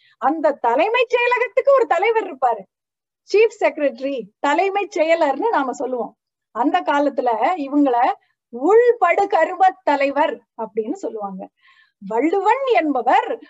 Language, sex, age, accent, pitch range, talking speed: Tamil, female, 30-49, native, 300-445 Hz, 80 wpm